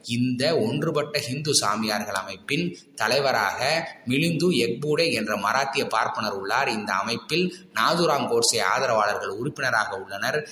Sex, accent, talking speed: male, native, 110 wpm